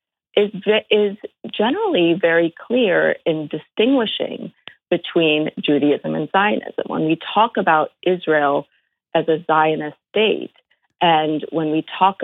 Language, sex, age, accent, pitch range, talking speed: English, female, 40-59, American, 150-185 Hz, 120 wpm